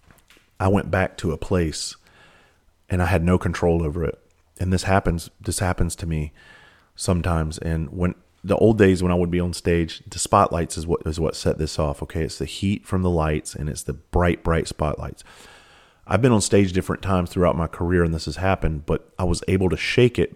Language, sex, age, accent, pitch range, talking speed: English, male, 30-49, American, 80-95 Hz, 220 wpm